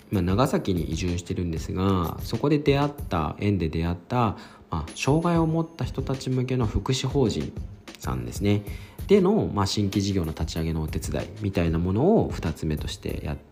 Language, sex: Japanese, male